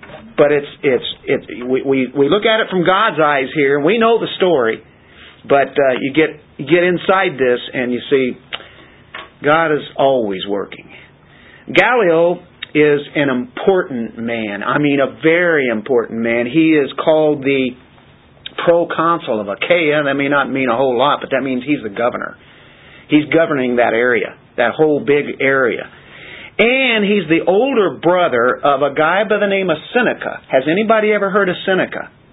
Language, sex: English, male